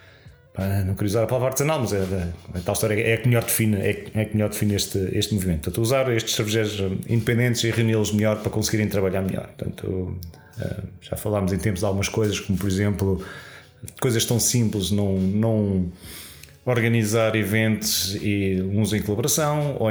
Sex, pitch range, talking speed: male, 95-115 Hz, 155 wpm